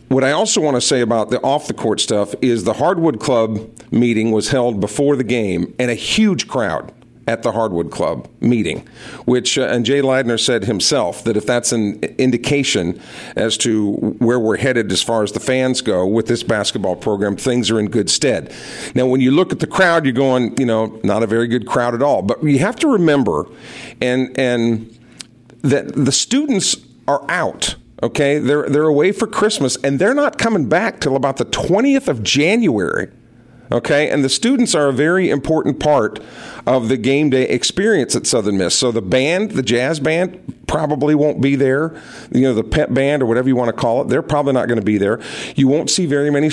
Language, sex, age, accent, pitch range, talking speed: English, male, 50-69, American, 120-145 Hz, 210 wpm